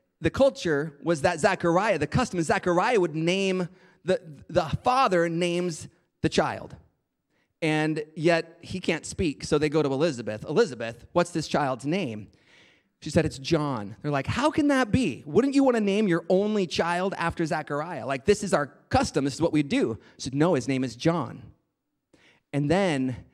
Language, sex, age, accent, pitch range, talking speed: English, male, 30-49, American, 130-180 Hz, 180 wpm